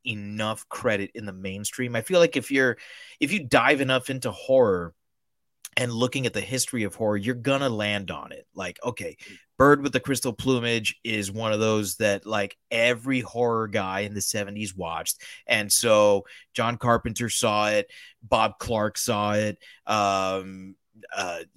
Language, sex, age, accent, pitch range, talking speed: English, male, 30-49, American, 105-130 Hz, 165 wpm